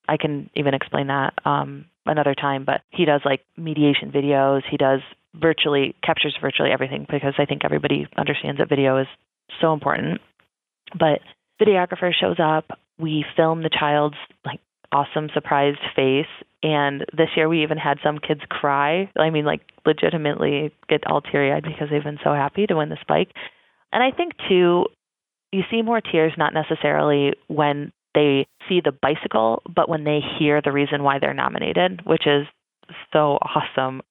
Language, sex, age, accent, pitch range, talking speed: English, female, 30-49, American, 145-160 Hz, 170 wpm